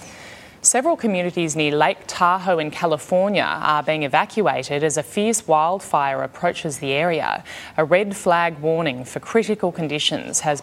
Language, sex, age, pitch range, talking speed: English, female, 10-29, 145-190 Hz, 140 wpm